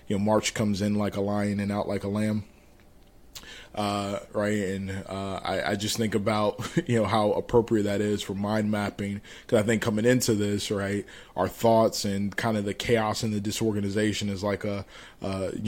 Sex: male